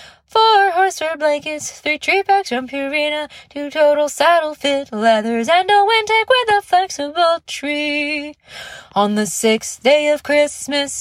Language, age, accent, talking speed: English, 20-39, American, 125 wpm